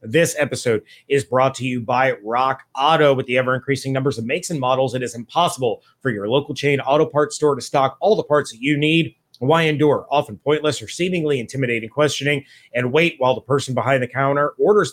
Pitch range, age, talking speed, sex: 130-150 Hz, 30-49, 210 wpm, male